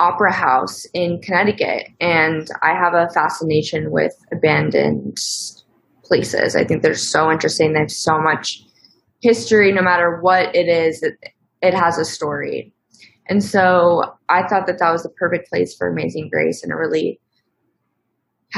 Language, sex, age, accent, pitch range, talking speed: English, female, 20-39, American, 160-195 Hz, 155 wpm